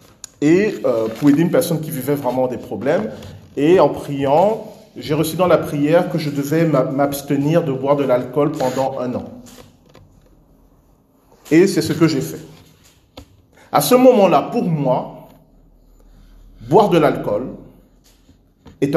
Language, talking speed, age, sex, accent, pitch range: French, 140 wpm, 40-59, male, French, 140-180 Hz